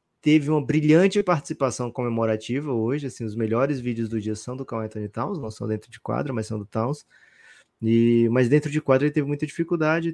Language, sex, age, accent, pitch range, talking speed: Portuguese, male, 20-39, Brazilian, 110-140 Hz, 200 wpm